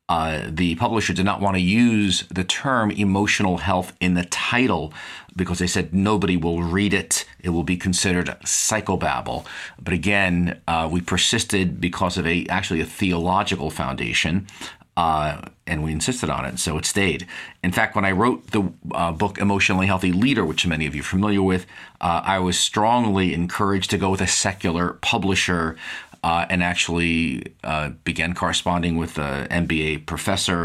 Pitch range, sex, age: 80-95 Hz, male, 40-59